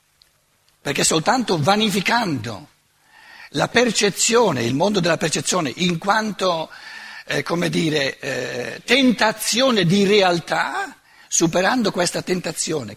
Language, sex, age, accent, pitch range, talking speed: Italian, male, 60-79, native, 170-250 Hz, 90 wpm